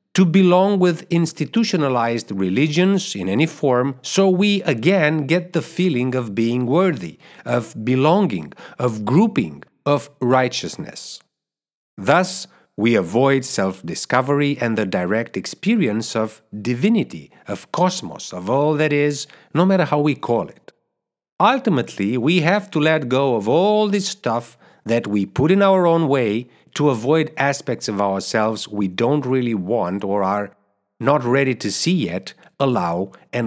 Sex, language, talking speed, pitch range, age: male, English, 145 wpm, 110-165 Hz, 50-69